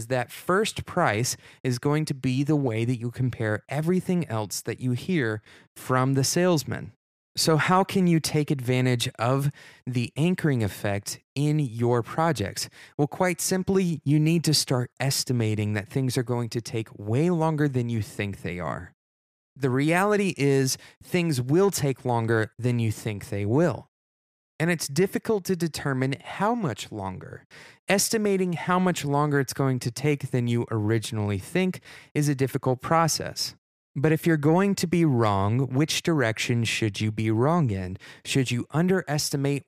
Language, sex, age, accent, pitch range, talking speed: English, male, 20-39, American, 115-160 Hz, 160 wpm